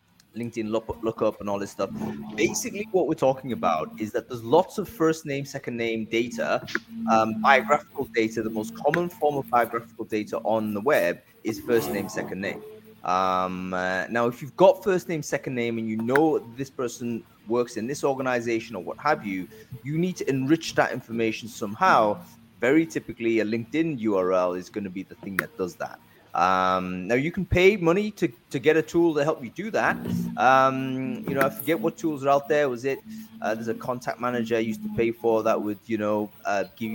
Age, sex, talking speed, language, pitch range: 20-39, male, 210 wpm, English, 105-140 Hz